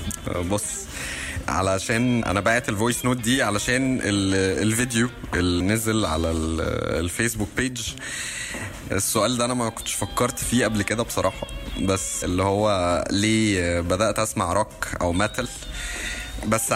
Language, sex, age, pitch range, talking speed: Arabic, male, 20-39, 90-120 Hz, 120 wpm